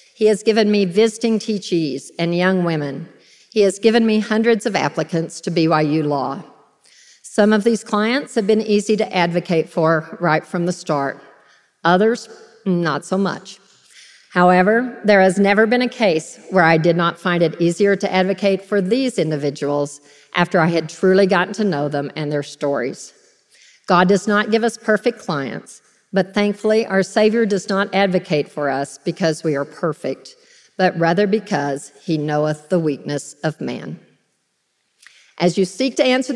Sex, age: female, 50-69